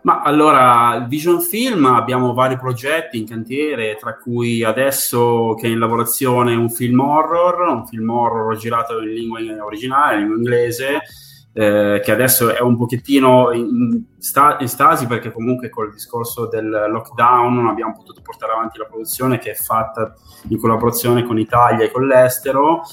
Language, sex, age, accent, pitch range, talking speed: Italian, male, 20-39, native, 110-130 Hz, 160 wpm